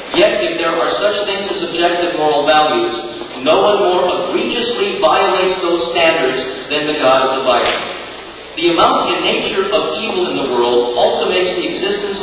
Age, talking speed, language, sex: 50-69, 175 wpm, English, male